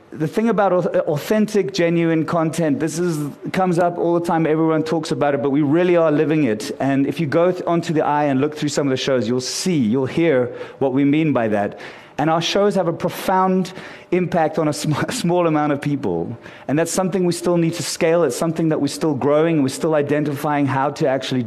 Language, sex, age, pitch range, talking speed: English, male, 30-49, 135-170 Hz, 225 wpm